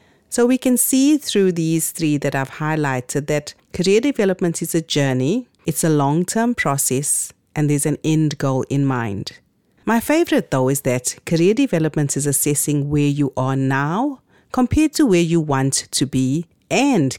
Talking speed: 170 wpm